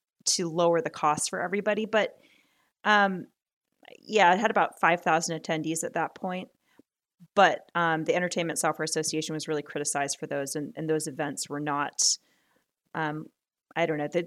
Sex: female